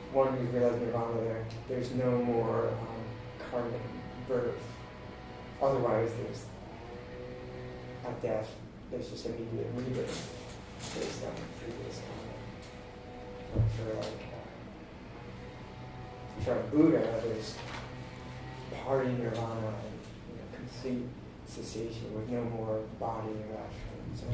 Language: English